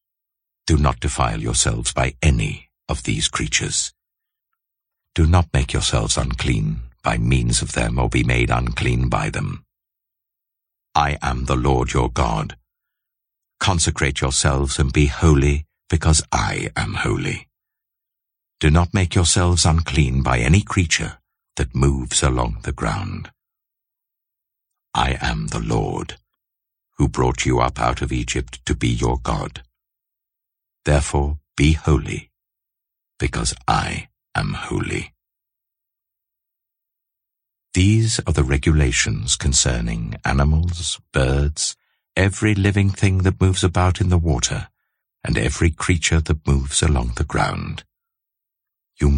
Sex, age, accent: male, 60-79, British